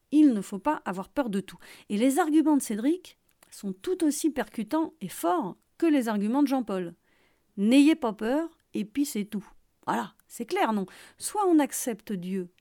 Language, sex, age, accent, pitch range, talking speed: French, female, 40-59, French, 195-280 Hz, 185 wpm